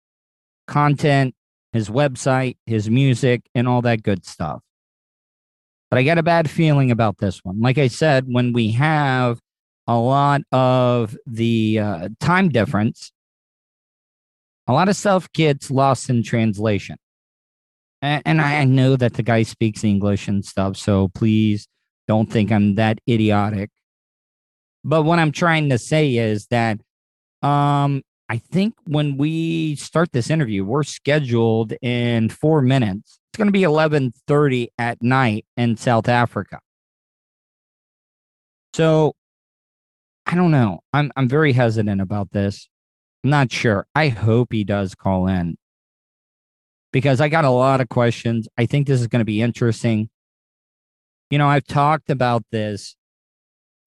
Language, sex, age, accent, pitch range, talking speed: English, male, 40-59, American, 110-145 Hz, 145 wpm